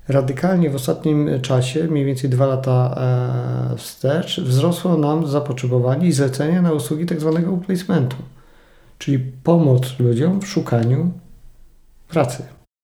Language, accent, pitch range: Polish, native, 130-155 Hz